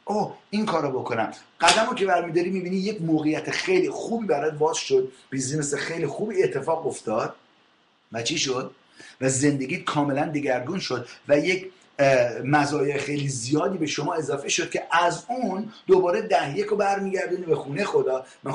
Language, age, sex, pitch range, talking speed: English, 30-49, male, 145-205 Hz, 160 wpm